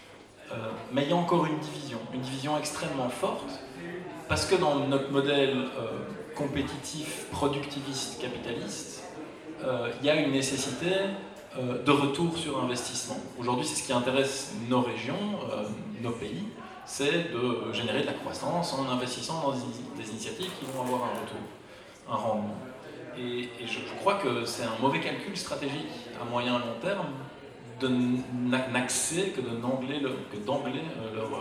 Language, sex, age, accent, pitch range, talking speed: French, male, 20-39, French, 130-155 Hz, 140 wpm